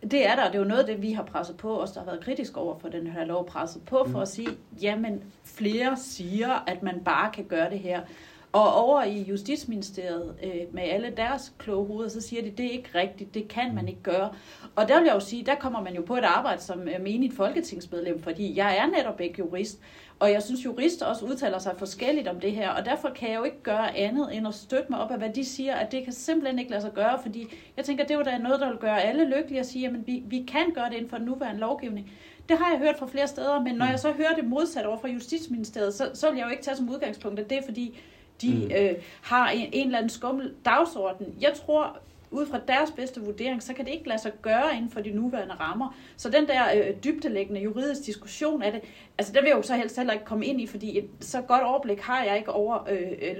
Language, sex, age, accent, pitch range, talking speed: Danish, female, 40-59, native, 200-265 Hz, 260 wpm